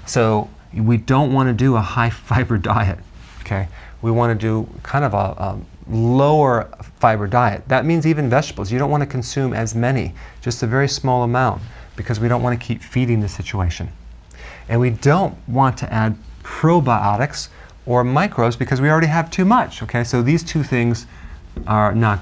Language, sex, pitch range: English, male, 100-130 Hz